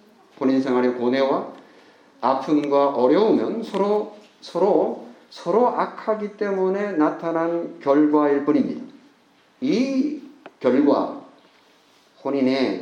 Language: Korean